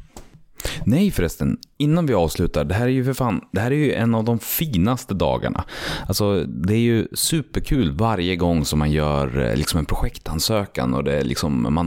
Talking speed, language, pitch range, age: 190 wpm, Swedish, 75-100 Hz, 30-49